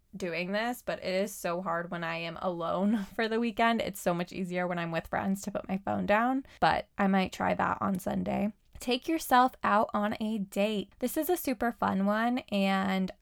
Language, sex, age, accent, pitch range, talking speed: English, female, 20-39, American, 185-220 Hz, 215 wpm